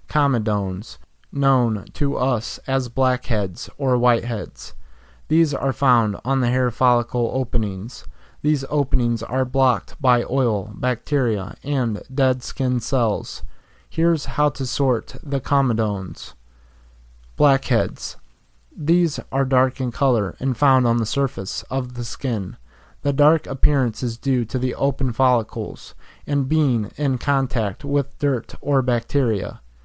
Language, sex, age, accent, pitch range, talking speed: English, male, 30-49, American, 110-140 Hz, 130 wpm